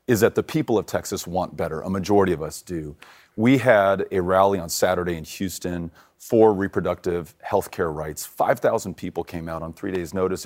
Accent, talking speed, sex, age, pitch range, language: American, 195 wpm, male, 30-49, 90-110 Hz, English